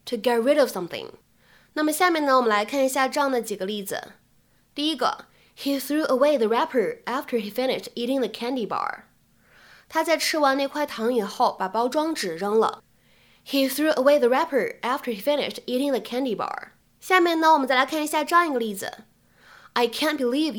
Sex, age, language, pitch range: female, 10-29, Chinese, 235-305 Hz